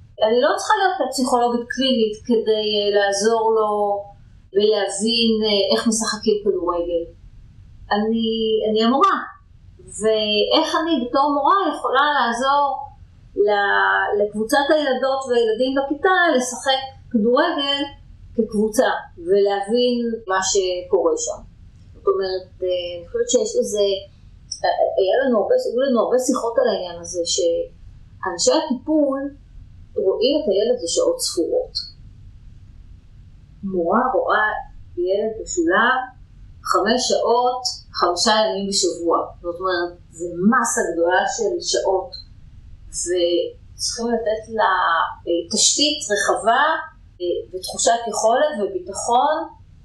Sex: female